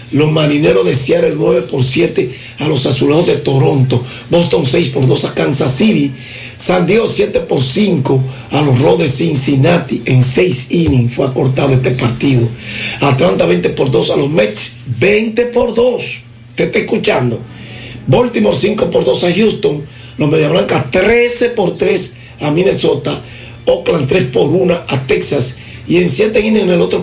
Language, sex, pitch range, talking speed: Spanish, male, 120-165 Hz, 165 wpm